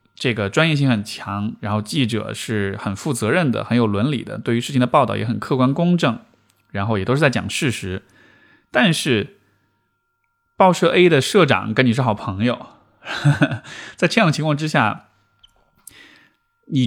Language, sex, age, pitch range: Chinese, male, 20-39, 105-150 Hz